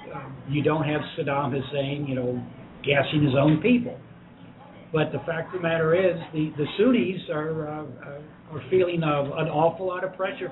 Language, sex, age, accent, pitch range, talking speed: English, male, 60-79, American, 150-185 Hz, 195 wpm